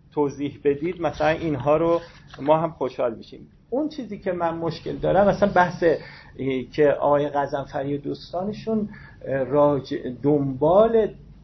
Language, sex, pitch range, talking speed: Persian, male, 145-195 Hz, 120 wpm